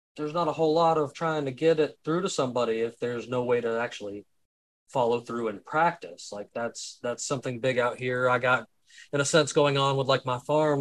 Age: 20-39